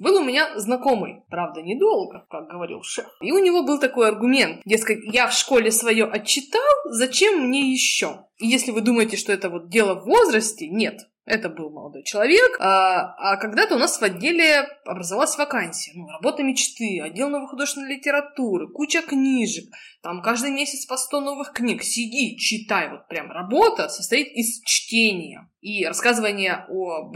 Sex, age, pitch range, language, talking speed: female, 20-39, 195-270 Hz, Russian, 165 wpm